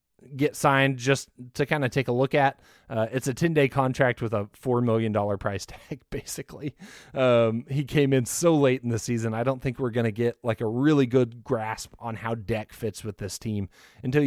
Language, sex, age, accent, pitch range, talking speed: English, male, 30-49, American, 115-135 Hz, 220 wpm